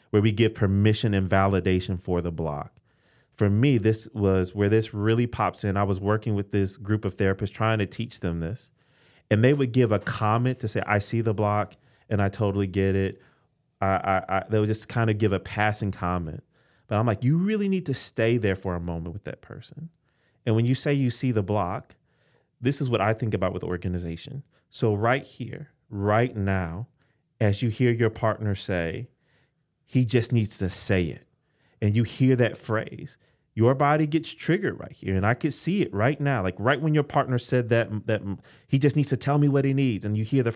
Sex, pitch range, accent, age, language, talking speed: male, 100-135 Hz, American, 30-49, English, 220 wpm